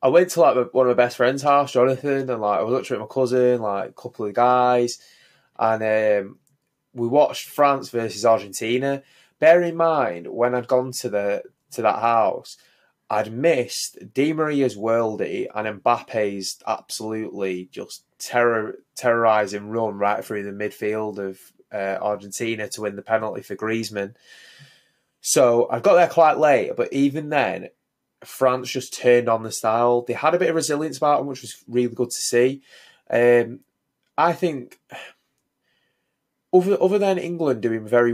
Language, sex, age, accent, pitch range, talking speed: English, male, 20-39, British, 110-135 Hz, 165 wpm